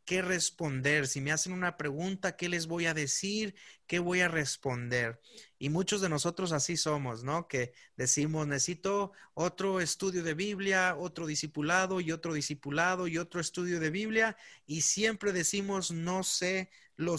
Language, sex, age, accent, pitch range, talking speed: Spanish, male, 30-49, Mexican, 140-180 Hz, 160 wpm